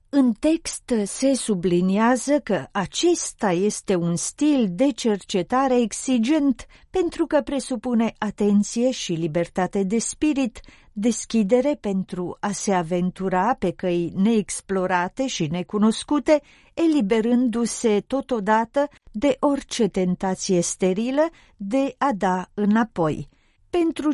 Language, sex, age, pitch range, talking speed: Romanian, female, 40-59, 190-260 Hz, 100 wpm